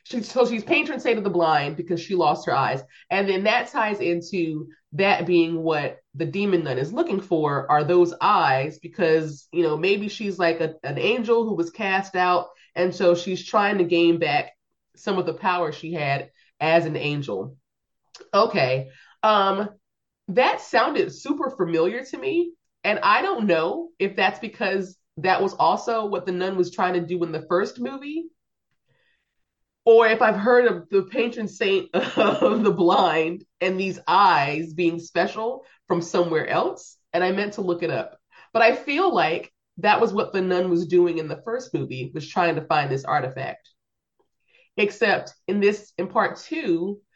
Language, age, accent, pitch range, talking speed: English, 30-49, American, 170-215 Hz, 175 wpm